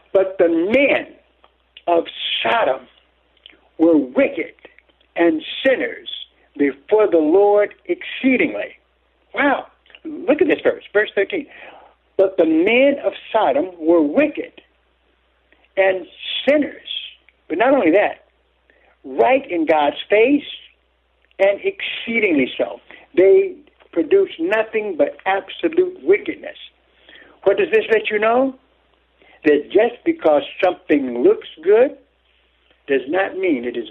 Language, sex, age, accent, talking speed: English, male, 60-79, American, 110 wpm